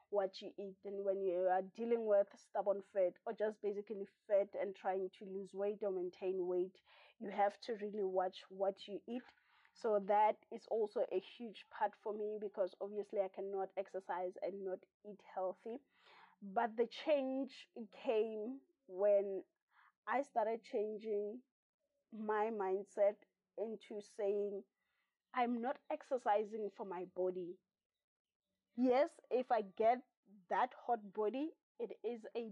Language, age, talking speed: English, 20-39, 140 wpm